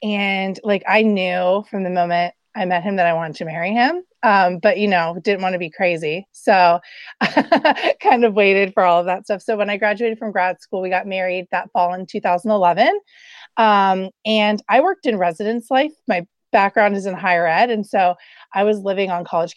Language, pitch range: English, 180-230 Hz